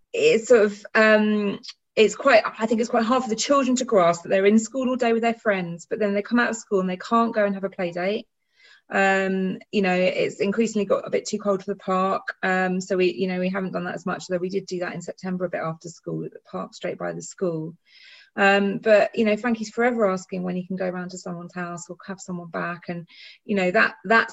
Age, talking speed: 30-49, 265 wpm